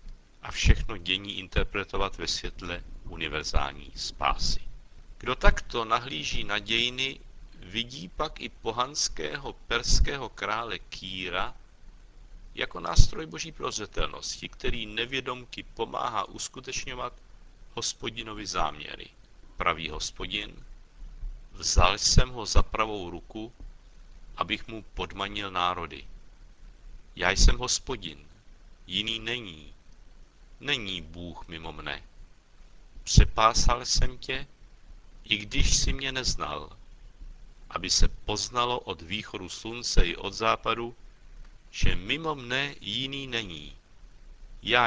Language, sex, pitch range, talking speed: Czech, male, 90-120 Hz, 100 wpm